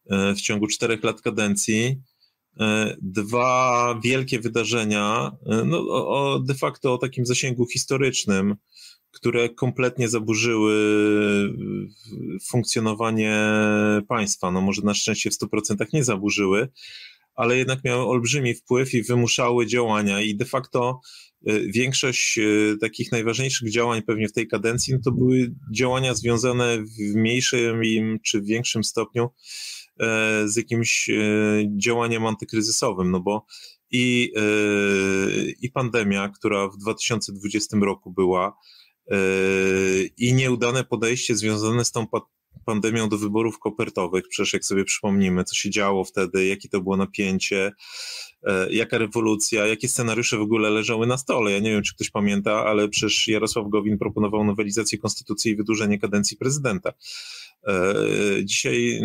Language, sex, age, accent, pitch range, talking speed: Polish, male, 30-49, native, 105-120 Hz, 125 wpm